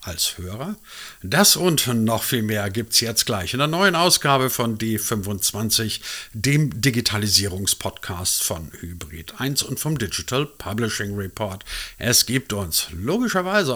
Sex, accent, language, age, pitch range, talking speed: male, German, German, 50-69, 100-140 Hz, 130 wpm